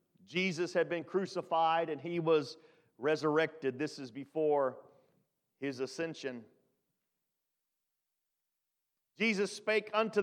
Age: 40-59